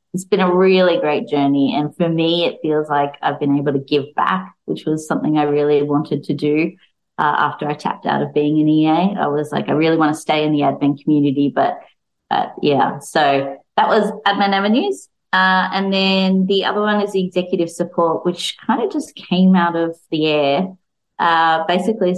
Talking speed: 205 wpm